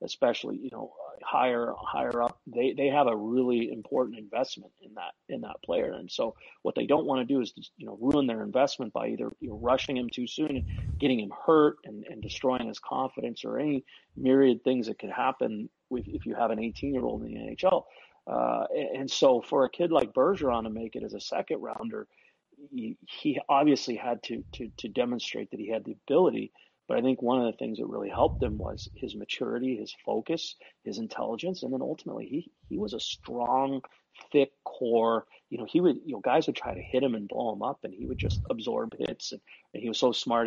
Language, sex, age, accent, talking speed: English, male, 40-59, American, 225 wpm